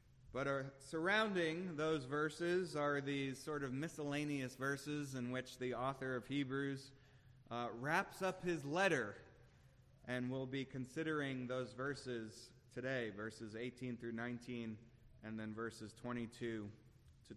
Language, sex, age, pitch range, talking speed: English, male, 30-49, 125-145 Hz, 125 wpm